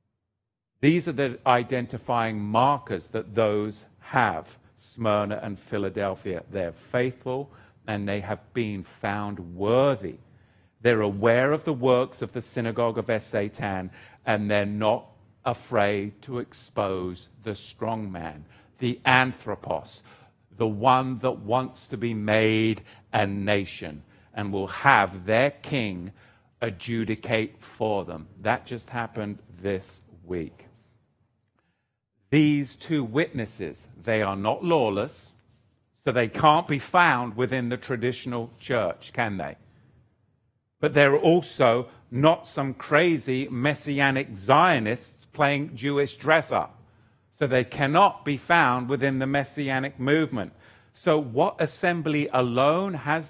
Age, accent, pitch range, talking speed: 50-69, British, 105-135 Hz, 120 wpm